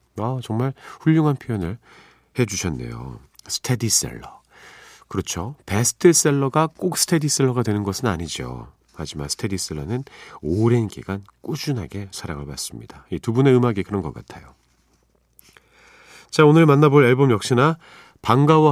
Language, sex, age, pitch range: Korean, male, 40-59, 90-135 Hz